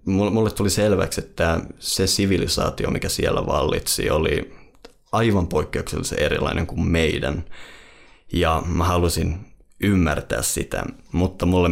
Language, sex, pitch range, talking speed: Finnish, male, 85-100 Hz, 115 wpm